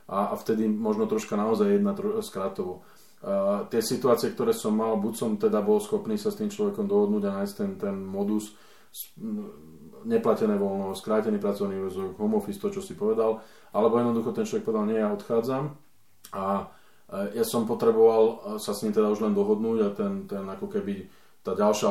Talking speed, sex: 185 wpm, male